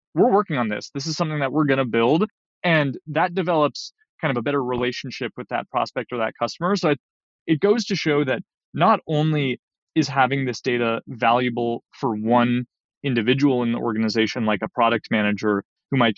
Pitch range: 120-160 Hz